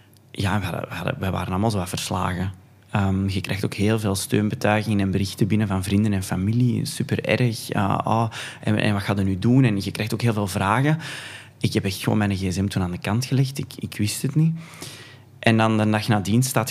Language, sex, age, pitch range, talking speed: Dutch, male, 20-39, 100-120 Hz, 225 wpm